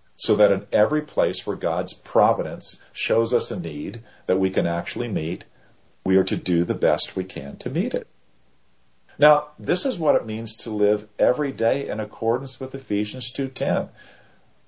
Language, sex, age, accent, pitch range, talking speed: English, male, 50-69, American, 80-130 Hz, 175 wpm